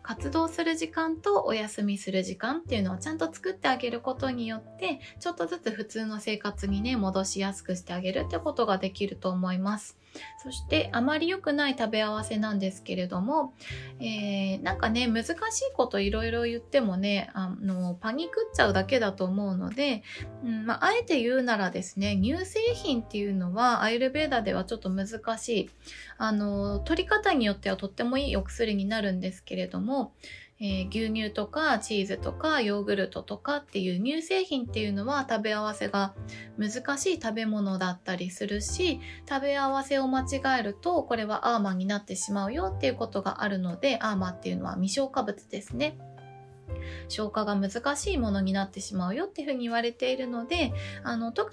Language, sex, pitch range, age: Japanese, female, 195-270 Hz, 20-39